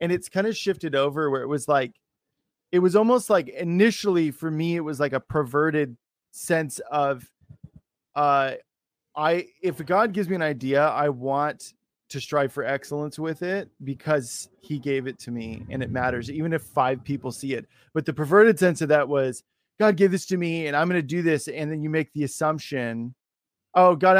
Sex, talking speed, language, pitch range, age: male, 200 wpm, English, 130-160 Hz, 20-39